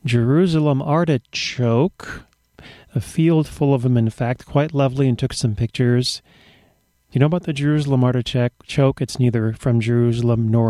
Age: 40-59